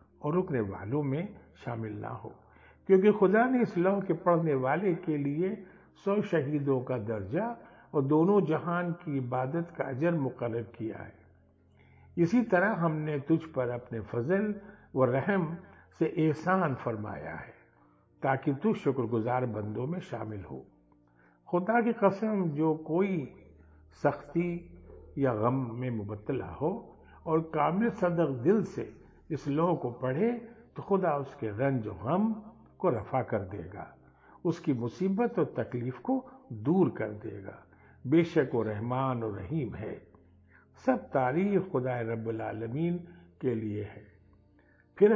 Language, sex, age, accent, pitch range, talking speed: Hindi, male, 60-79, native, 110-170 Hz, 135 wpm